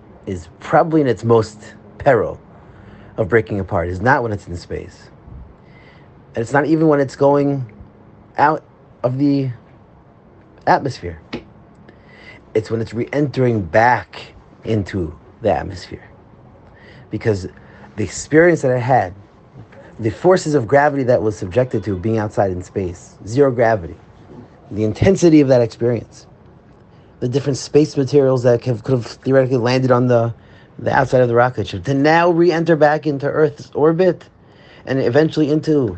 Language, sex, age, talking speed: English, male, 30-49, 145 wpm